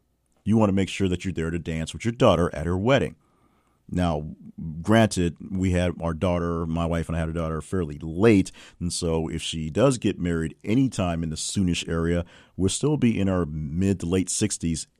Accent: American